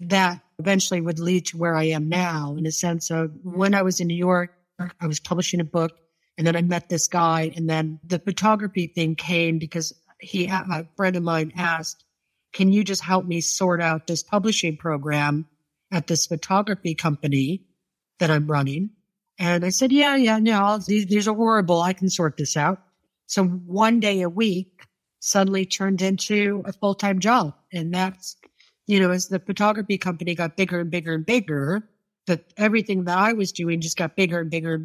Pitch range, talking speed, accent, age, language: 170-205 Hz, 195 wpm, American, 50-69, English